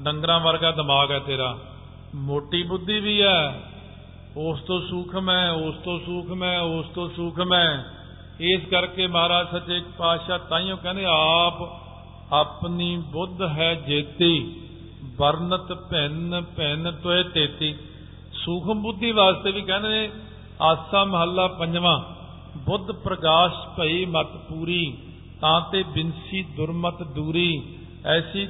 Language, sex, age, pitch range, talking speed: Punjabi, male, 50-69, 150-185 Hz, 125 wpm